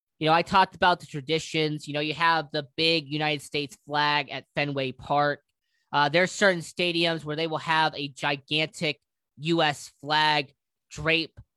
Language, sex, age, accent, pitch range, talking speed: English, male, 20-39, American, 140-180 Hz, 170 wpm